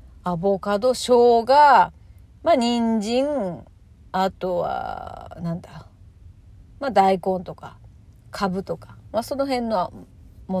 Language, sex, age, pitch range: Japanese, female, 40-59, 180-285 Hz